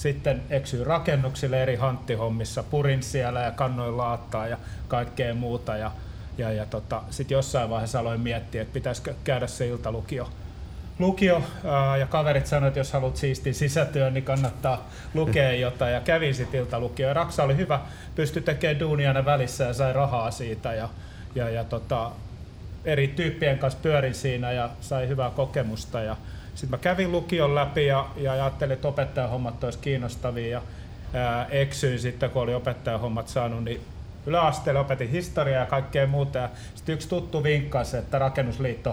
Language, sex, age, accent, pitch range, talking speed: Finnish, male, 30-49, native, 120-140 Hz, 150 wpm